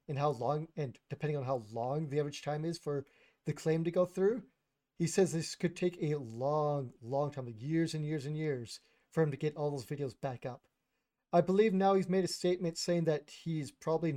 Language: English